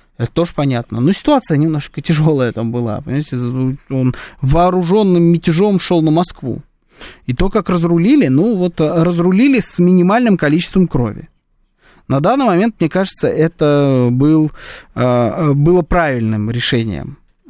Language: Russian